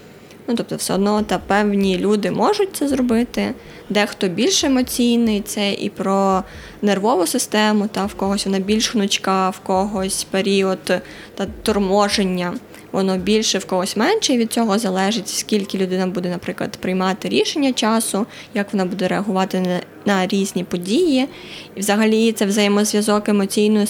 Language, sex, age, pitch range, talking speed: Ukrainian, female, 20-39, 195-225 Hz, 145 wpm